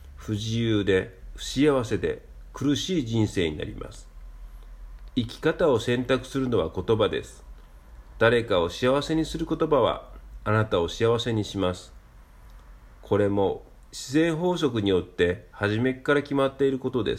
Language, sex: Japanese, male